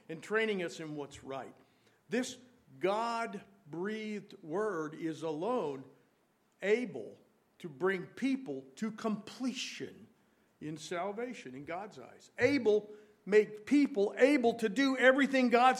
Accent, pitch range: American, 165-240 Hz